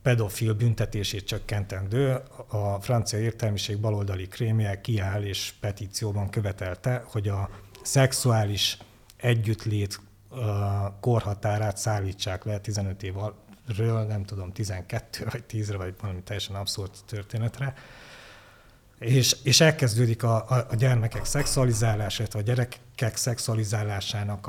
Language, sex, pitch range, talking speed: Hungarian, male, 100-115 Hz, 105 wpm